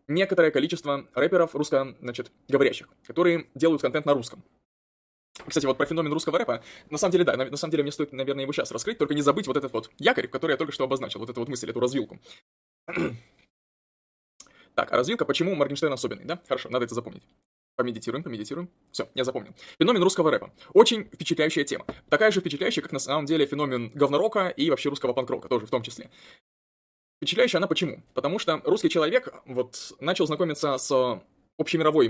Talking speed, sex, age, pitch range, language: 185 wpm, male, 20-39, 125-170 Hz, Russian